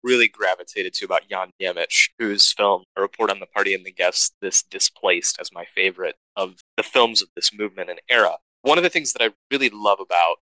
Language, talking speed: English, 215 wpm